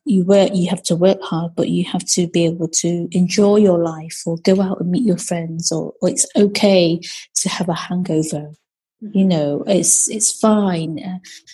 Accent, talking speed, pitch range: British, 190 wpm, 170-205 Hz